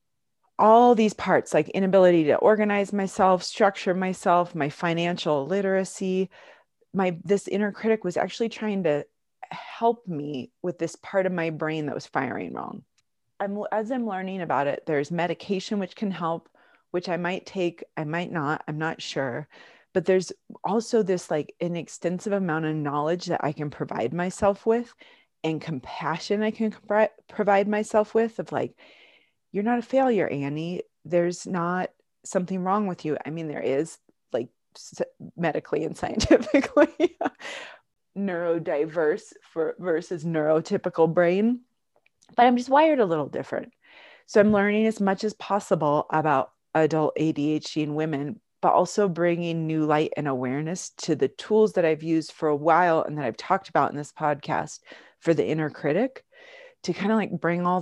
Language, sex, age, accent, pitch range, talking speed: English, female, 30-49, American, 155-210 Hz, 160 wpm